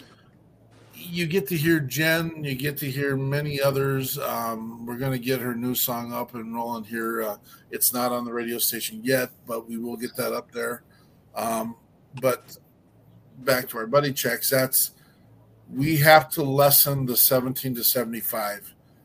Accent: American